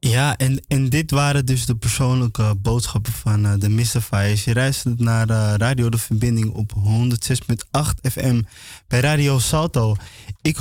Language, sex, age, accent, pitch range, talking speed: Dutch, male, 20-39, Dutch, 115-160 Hz, 155 wpm